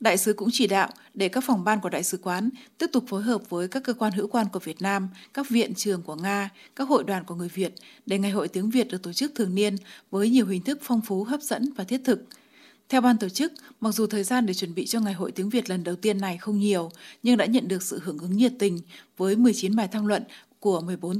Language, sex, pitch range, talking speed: Vietnamese, female, 190-240 Hz, 270 wpm